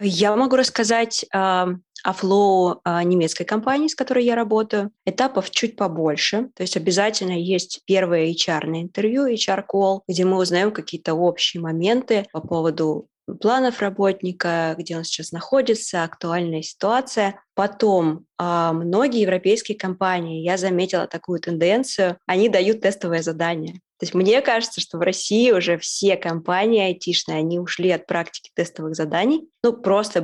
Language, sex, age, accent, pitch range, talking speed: Russian, female, 20-39, native, 170-210 Hz, 145 wpm